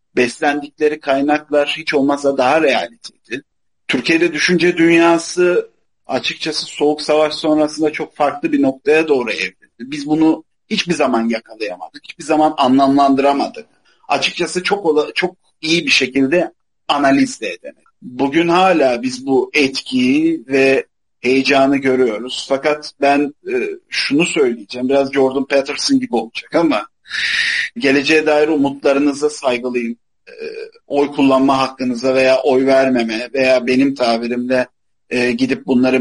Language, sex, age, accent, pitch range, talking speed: Turkish, male, 40-59, native, 130-170 Hz, 115 wpm